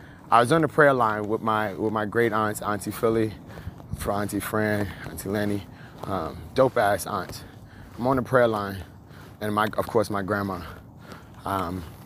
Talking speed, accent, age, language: 175 wpm, American, 30-49, English